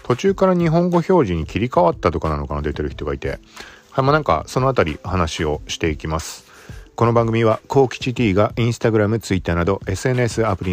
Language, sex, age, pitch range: Japanese, male, 50-69, 85-120 Hz